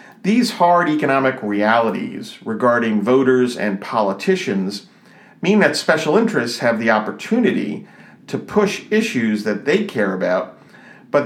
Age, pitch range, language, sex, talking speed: 50-69, 115-190 Hz, English, male, 125 wpm